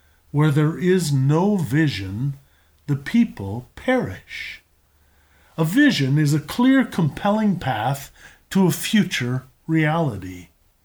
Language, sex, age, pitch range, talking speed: English, male, 50-69, 125-195 Hz, 105 wpm